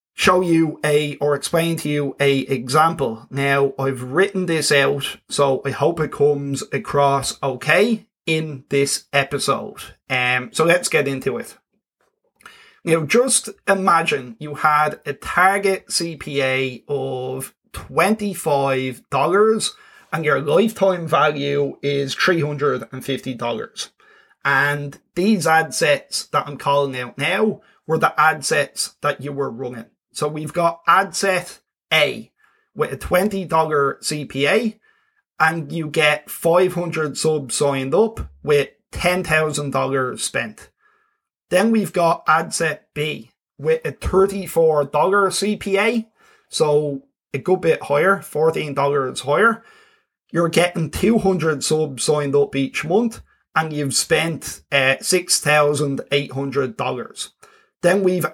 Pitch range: 140-185 Hz